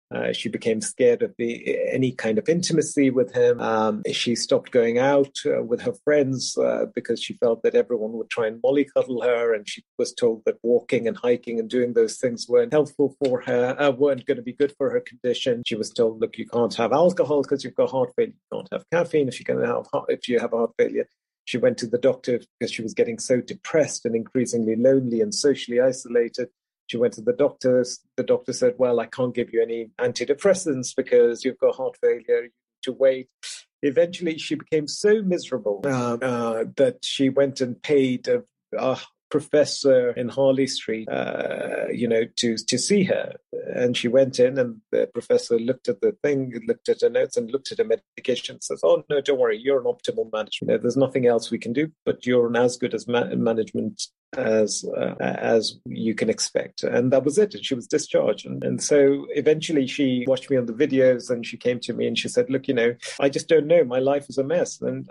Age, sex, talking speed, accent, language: 40-59, male, 215 wpm, British, English